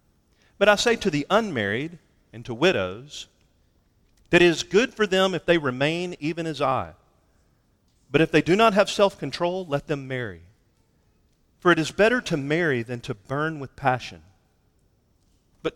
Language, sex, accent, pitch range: English, male, American, 120-165 Hz